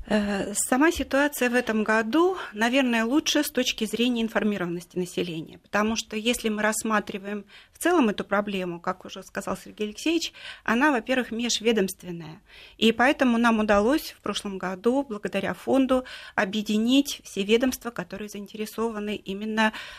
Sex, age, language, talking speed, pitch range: female, 30-49, Russian, 130 wpm, 195-245 Hz